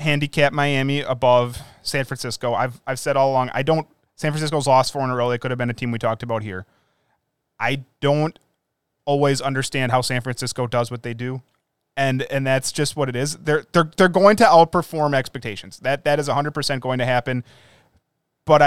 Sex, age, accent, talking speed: male, 20-39, American, 205 wpm